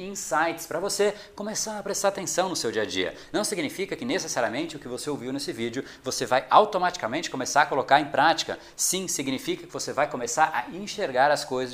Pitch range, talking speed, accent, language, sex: 125-160 Hz, 205 wpm, Brazilian, Portuguese, male